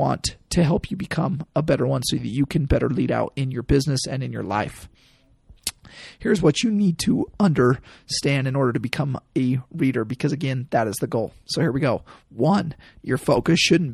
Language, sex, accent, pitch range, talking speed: English, male, American, 125-165 Hz, 205 wpm